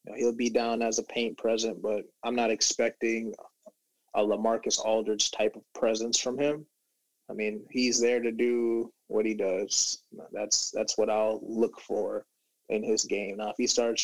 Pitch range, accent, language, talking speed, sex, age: 115-140 Hz, American, English, 185 wpm, male, 20-39